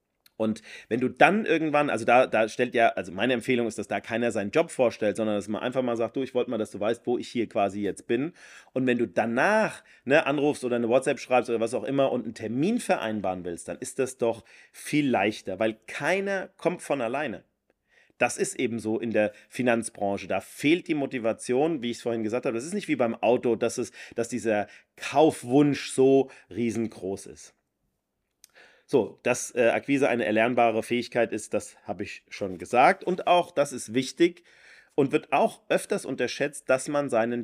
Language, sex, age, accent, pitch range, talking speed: German, male, 30-49, German, 115-140 Hz, 200 wpm